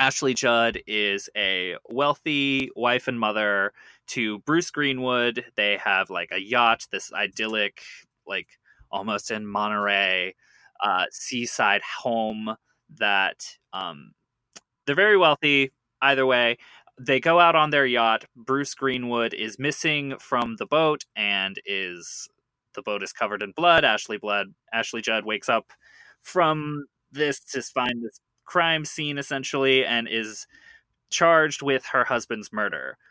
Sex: male